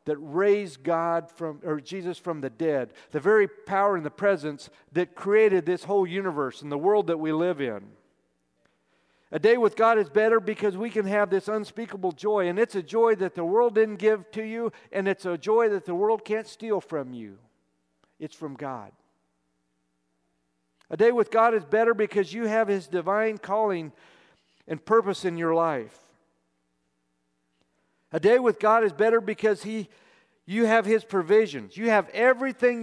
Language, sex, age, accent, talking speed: English, male, 50-69, American, 175 wpm